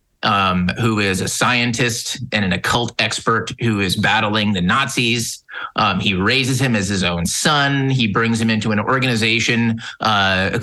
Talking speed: 165 wpm